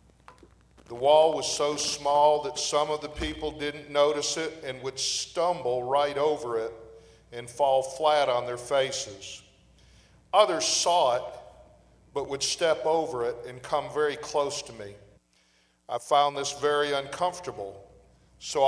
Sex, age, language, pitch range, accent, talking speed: male, 50-69, English, 130-155 Hz, American, 145 wpm